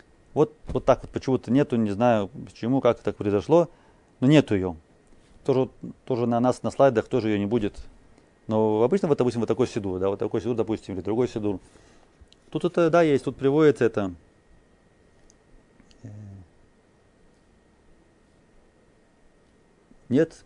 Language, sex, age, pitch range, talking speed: Russian, male, 30-49, 105-140 Hz, 145 wpm